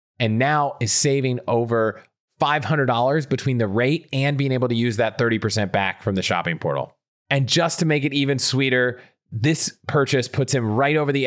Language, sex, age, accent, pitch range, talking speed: English, male, 30-49, American, 110-145 Hz, 185 wpm